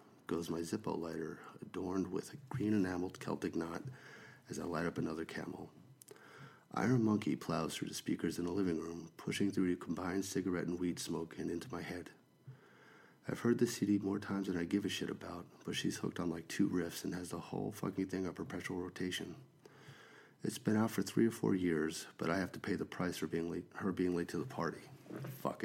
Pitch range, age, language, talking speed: 85-105 Hz, 40-59, English, 215 wpm